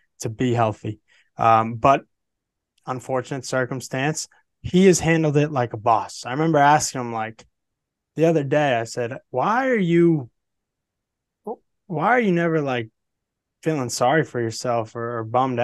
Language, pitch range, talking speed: English, 115-130 Hz, 150 wpm